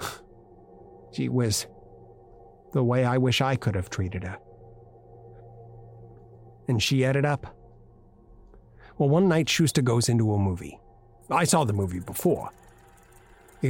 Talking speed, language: 125 wpm, English